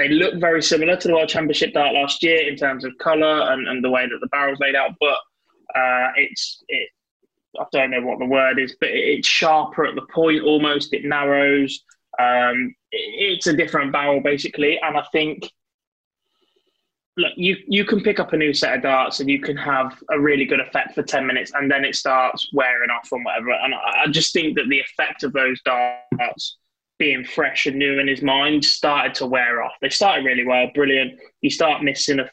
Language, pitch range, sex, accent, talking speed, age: English, 135-165 Hz, male, British, 205 wpm, 20-39